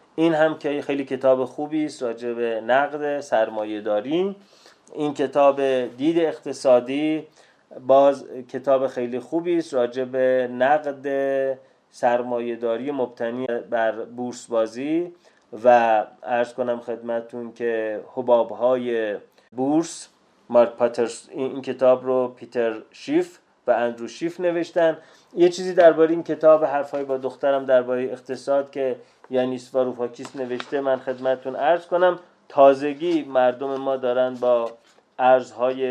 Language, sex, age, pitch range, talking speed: Persian, male, 30-49, 120-140 Hz, 120 wpm